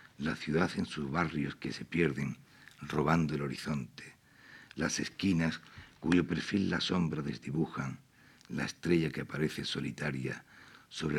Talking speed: 130 wpm